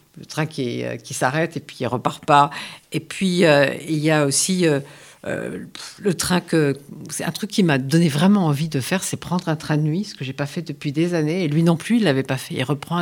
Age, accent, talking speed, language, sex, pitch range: 50-69, French, 270 wpm, Italian, female, 145-175 Hz